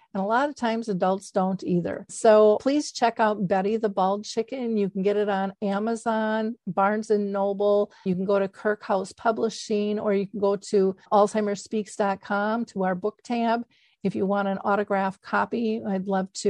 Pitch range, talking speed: 195-225 Hz, 180 wpm